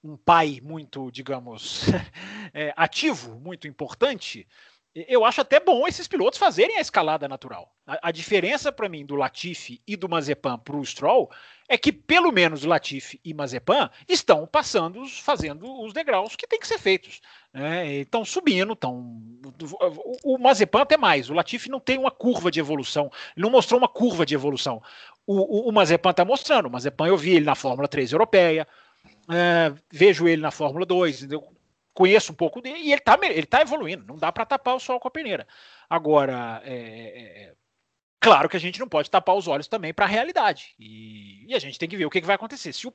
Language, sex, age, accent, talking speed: Portuguese, male, 40-59, Brazilian, 200 wpm